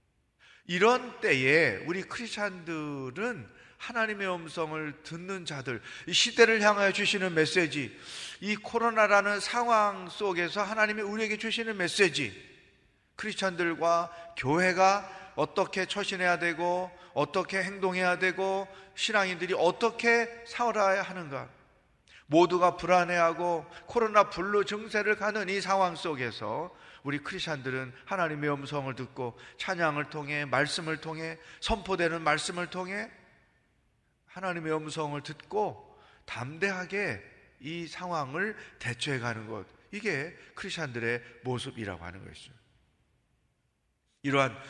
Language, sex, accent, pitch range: Korean, male, native, 145-195 Hz